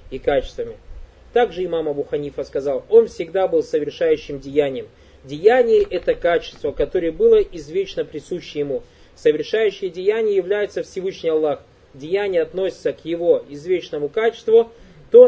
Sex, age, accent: male, 20-39, native